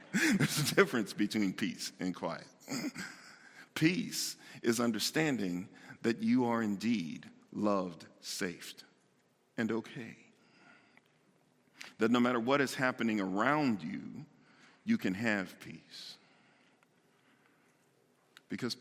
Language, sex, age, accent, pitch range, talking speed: English, male, 50-69, American, 95-120 Hz, 100 wpm